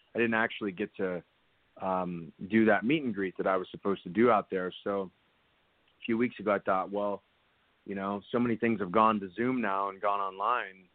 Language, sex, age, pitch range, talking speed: English, male, 30-49, 95-110 Hz, 220 wpm